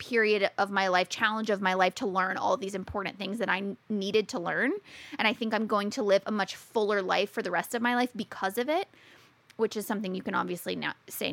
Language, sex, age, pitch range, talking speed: English, female, 20-39, 200-250 Hz, 250 wpm